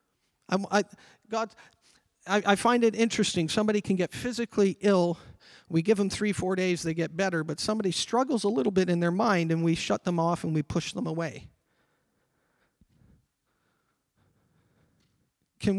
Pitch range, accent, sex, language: 170-245 Hz, American, male, English